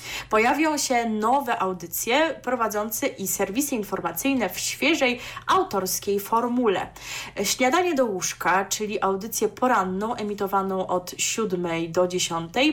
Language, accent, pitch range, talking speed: Polish, native, 185-255 Hz, 110 wpm